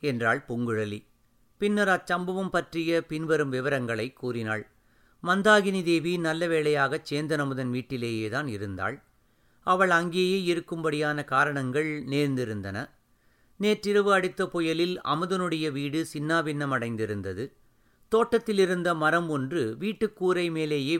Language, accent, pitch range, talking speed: Tamil, native, 125-175 Hz, 90 wpm